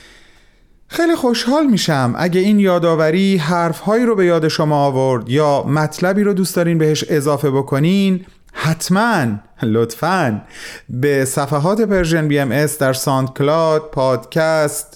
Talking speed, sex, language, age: 120 wpm, male, Persian, 30-49